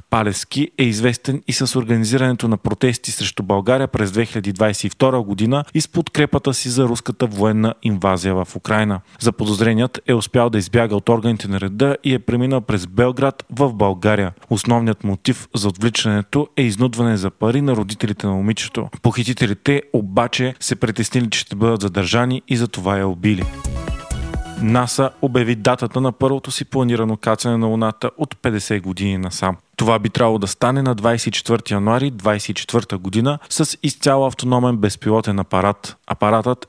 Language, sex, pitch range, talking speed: Bulgarian, male, 105-125 Hz, 155 wpm